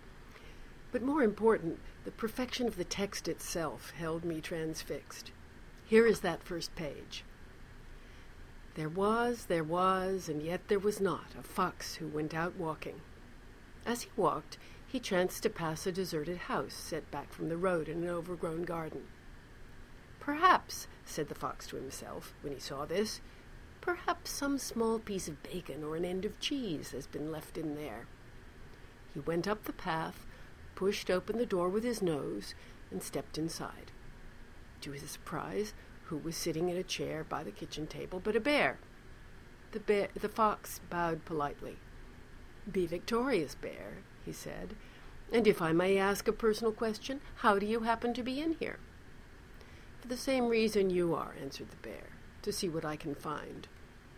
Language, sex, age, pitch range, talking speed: English, female, 60-79, 160-225 Hz, 165 wpm